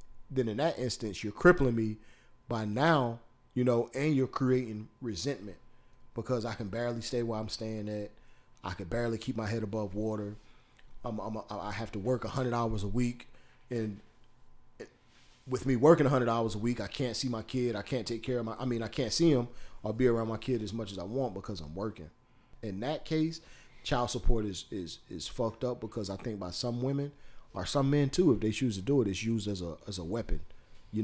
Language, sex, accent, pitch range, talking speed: English, male, American, 95-125 Hz, 225 wpm